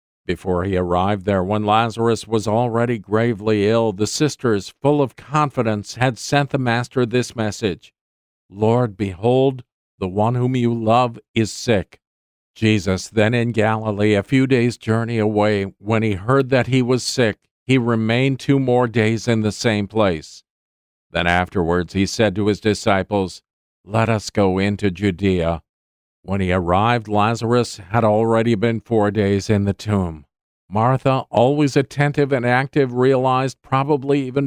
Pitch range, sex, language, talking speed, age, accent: 100-125 Hz, male, English, 150 wpm, 50-69, American